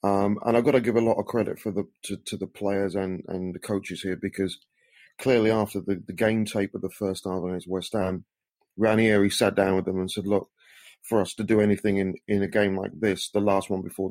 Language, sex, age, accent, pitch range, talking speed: English, male, 30-49, British, 100-110 Hz, 245 wpm